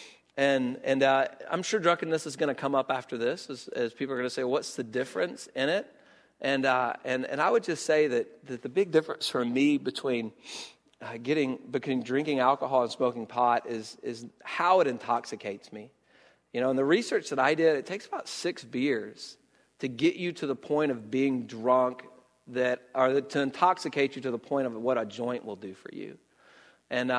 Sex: male